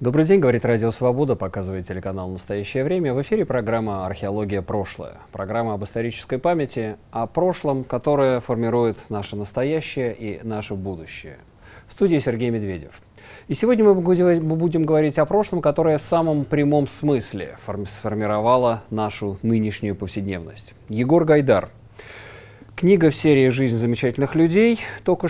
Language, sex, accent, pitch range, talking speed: Russian, male, native, 105-150 Hz, 135 wpm